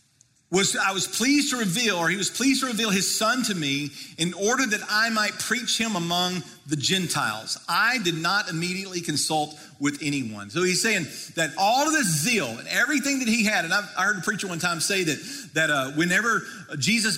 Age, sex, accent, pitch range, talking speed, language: 40-59, male, American, 165-230 Hz, 210 wpm, English